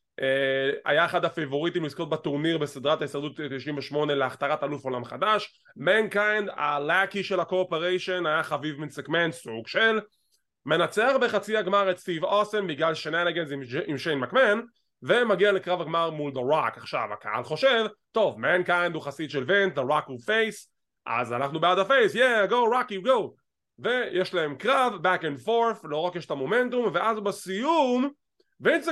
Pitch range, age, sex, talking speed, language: 155-220 Hz, 20-39, male, 130 wpm, English